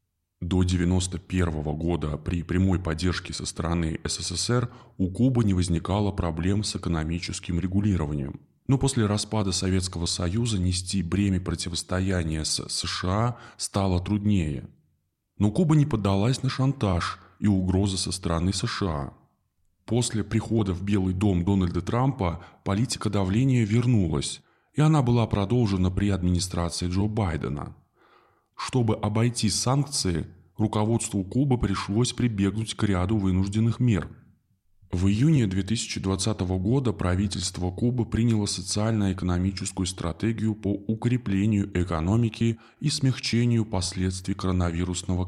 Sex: male